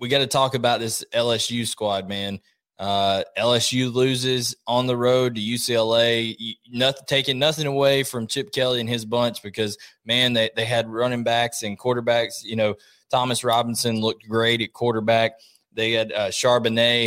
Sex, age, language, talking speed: male, 20-39, English, 165 wpm